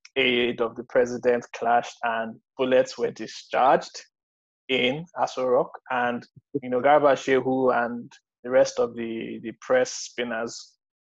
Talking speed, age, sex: 130 wpm, 20-39, male